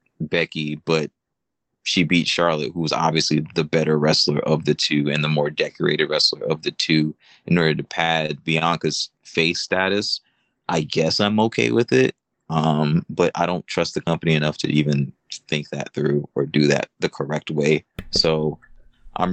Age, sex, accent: 20-39, male, American